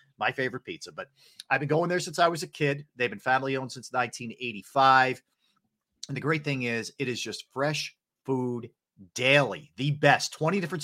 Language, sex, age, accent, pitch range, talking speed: English, male, 40-59, American, 130-155 Hz, 185 wpm